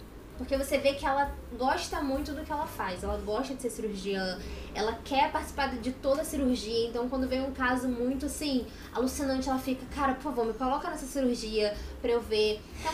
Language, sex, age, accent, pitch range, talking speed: Portuguese, female, 10-29, Brazilian, 225-290 Hz, 205 wpm